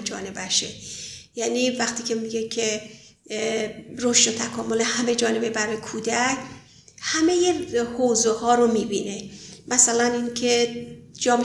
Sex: female